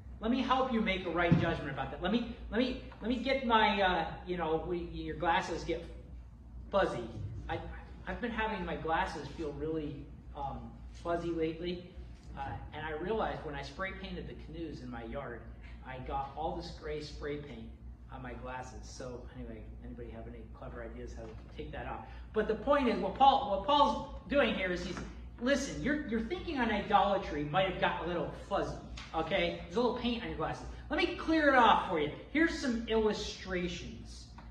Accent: American